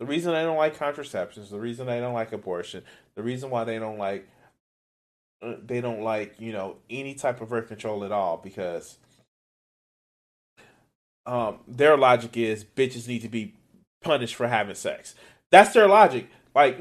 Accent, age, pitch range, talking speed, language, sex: American, 30-49, 110-160 Hz, 170 wpm, English, male